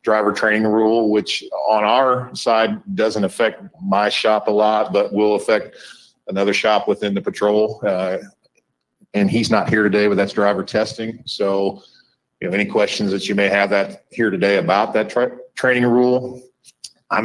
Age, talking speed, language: 40-59, 165 wpm, English